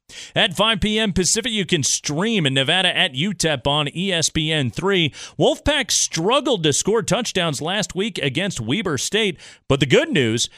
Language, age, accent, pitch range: English, 40-59, American, 135-195 Hz